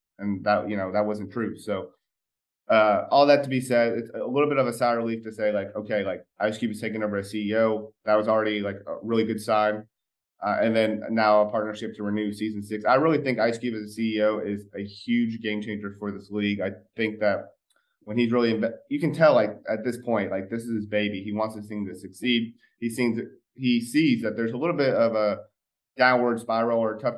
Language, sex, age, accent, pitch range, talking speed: English, male, 30-49, American, 105-115 Hz, 240 wpm